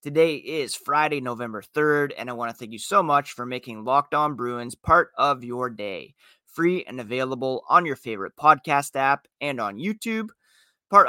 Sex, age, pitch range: male, 30-49, 120-150 Hz